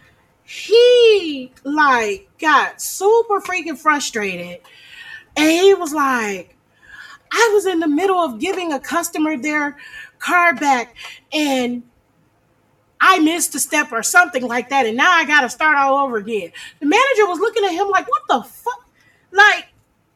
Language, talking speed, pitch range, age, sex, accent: English, 150 wpm, 270-365 Hz, 30-49, female, American